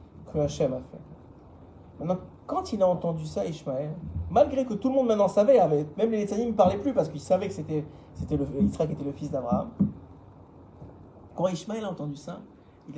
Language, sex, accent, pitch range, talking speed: French, male, French, 135-185 Hz, 185 wpm